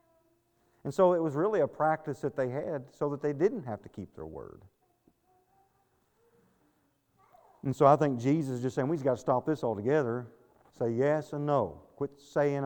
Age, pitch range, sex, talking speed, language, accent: 40-59, 125-150 Hz, male, 185 wpm, English, American